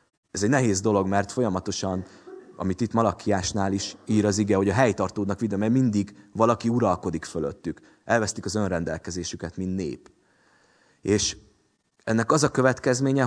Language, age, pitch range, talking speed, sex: Hungarian, 30-49, 95-120 Hz, 145 wpm, male